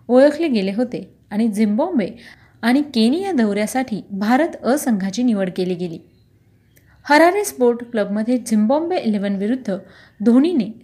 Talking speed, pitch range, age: 110 wpm, 210-260 Hz, 30-49